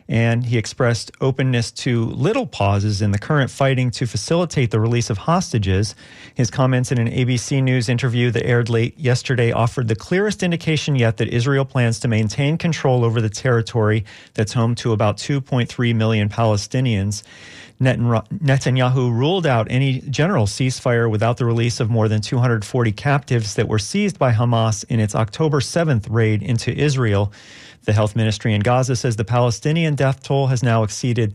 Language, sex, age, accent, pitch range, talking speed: English, male, 40-59, American, 115-135 Hz, 170 wpm